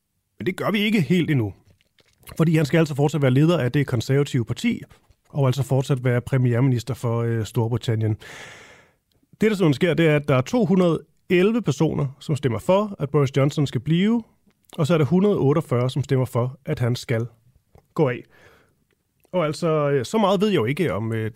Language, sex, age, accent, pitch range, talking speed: Danish, male, 30-49, native, 120-160 Hz, 190 wpm